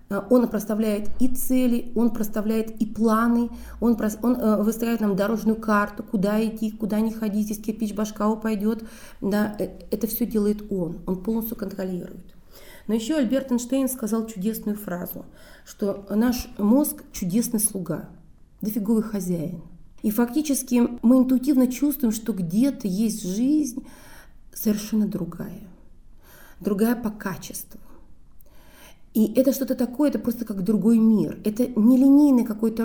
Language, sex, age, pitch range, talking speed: Russian, female, 30-49, 200-240 Hz, 130 wpm